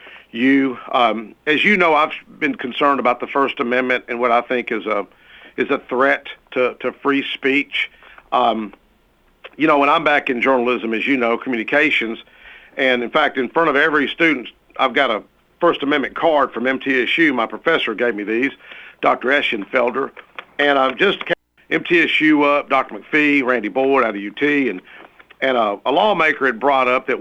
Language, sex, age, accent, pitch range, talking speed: English, male, 50-69, American, 125-150 Hz, 180 wpm